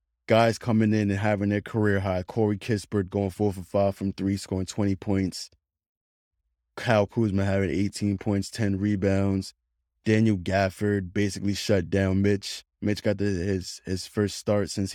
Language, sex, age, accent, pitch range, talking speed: English, male, 20-39, American, 90-105 Hz, 155 wpm